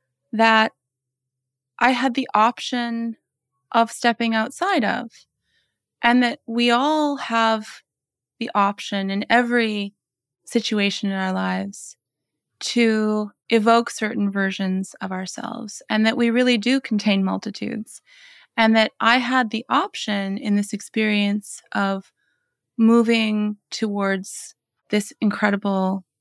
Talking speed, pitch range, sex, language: 110 wpm, 195-235 Hz, female, English